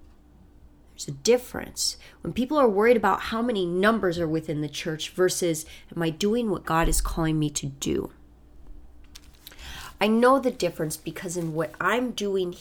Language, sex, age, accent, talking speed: English, female, 30-49, American, 160 wpm